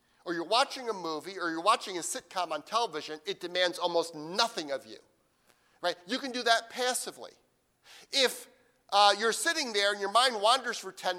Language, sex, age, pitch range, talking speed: English, male, 50-69, 175-240 Hz, 190 wpm